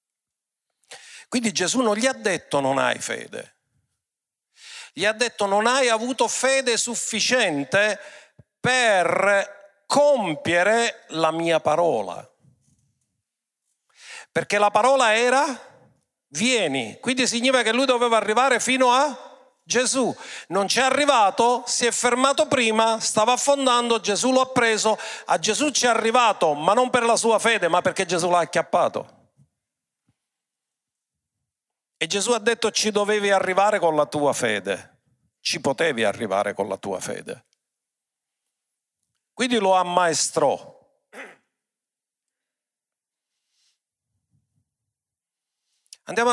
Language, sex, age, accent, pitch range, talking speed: Italian, male, 50-69, native, 175-245 Hz, 115 wpm